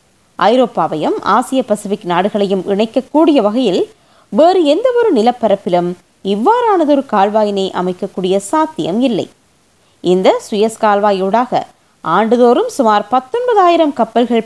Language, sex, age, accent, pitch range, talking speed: Tamil, female, 20-39, native, 215-315 Hz, 85 wpm